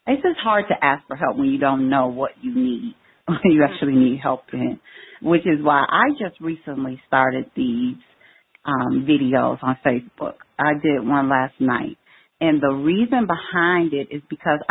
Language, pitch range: English, 145-230 Hz